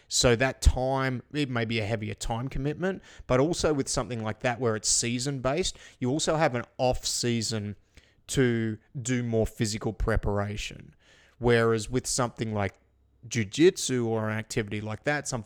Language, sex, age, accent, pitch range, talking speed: English, male, 30-49, Australian, 110-130 Hz, 155 wpm